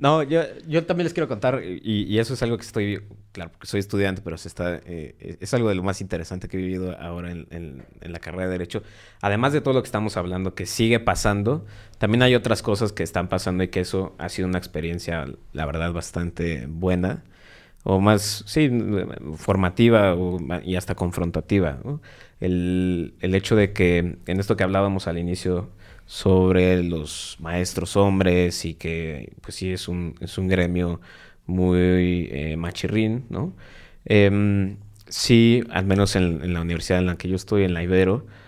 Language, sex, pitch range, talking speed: Spanish, male, 85-105 Hz, 180 wpm